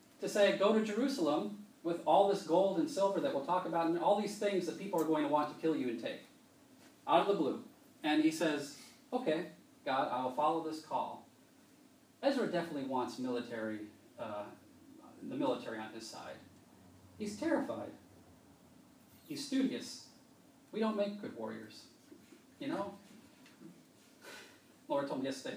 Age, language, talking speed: 30-49, English, 160 wpm